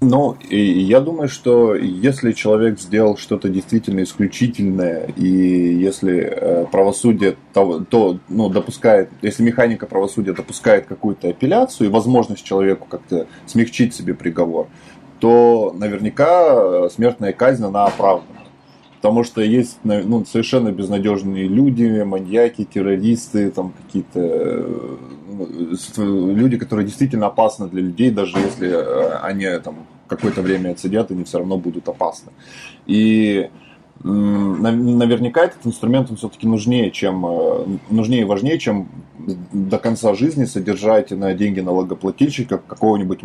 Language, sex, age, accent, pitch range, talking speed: Russian, male, 20-39, native, 95-120 Hz, 115 wpm